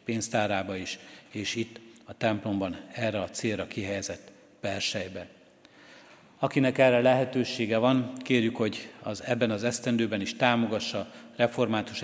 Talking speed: 120 wpm